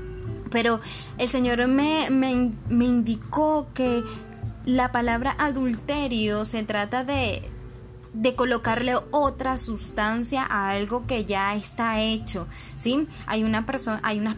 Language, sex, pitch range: Spanish, female, 195-245 Hz